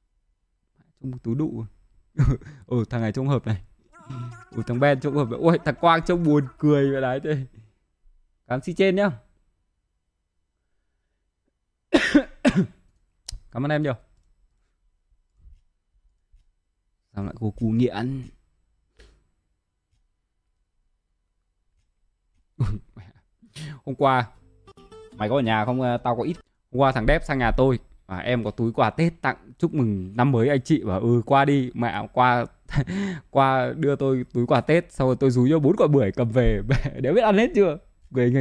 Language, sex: Vietnamese, male